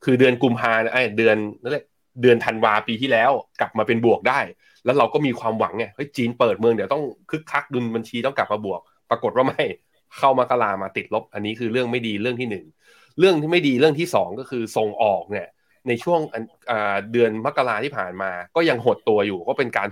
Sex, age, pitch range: male, 20-39, 105-130 Hz